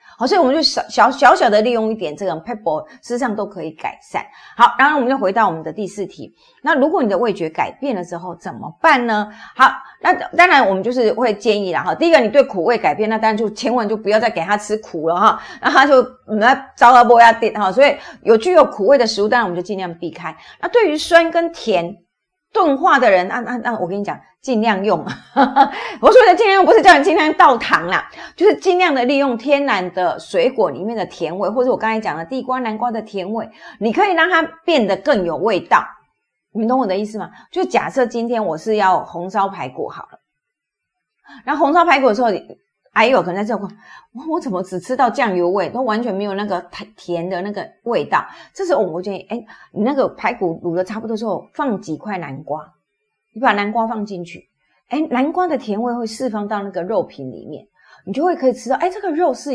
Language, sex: Chinese, female